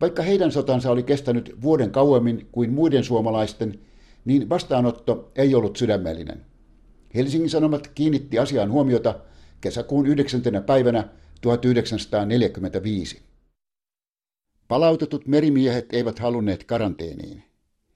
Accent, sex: native, male